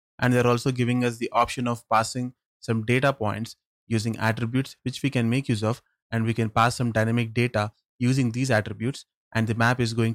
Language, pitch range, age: English, 110-120 Hz, 20-39